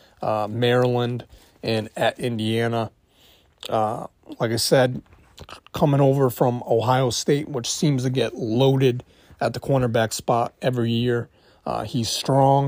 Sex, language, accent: male, English, American